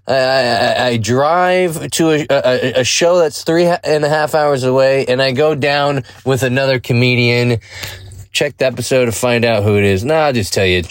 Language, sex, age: English, male, 20-39